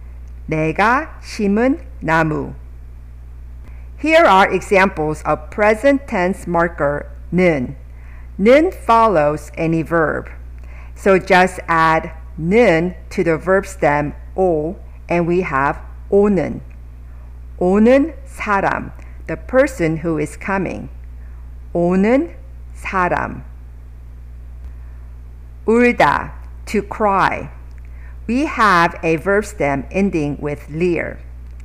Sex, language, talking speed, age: female, English, 90 wpm, 50-69